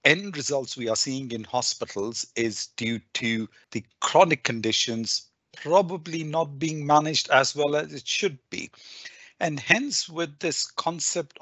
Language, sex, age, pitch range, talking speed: English, male, 50-69, 115-150 Hz, 145 wpm